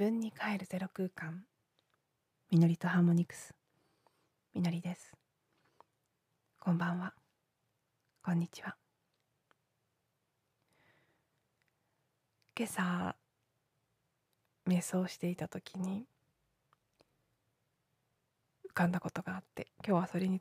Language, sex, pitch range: Japanese, female, 160-200 Hz